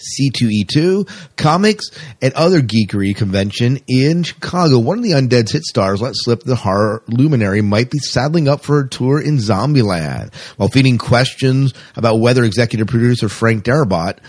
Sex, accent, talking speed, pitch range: male, American, 155 wpm, 100-135 Hz